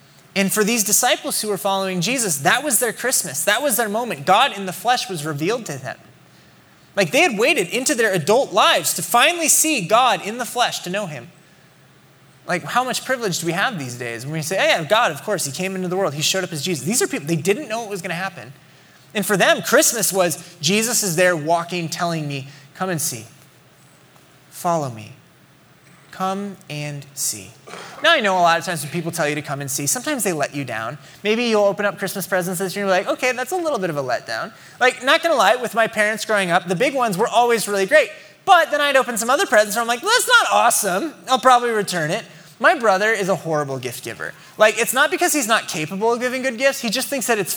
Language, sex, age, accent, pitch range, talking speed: English, male, 20-39, American, 165-245 Hz, 245 wpm